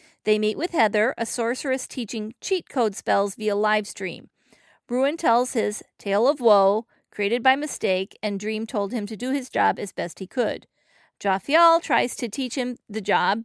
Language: English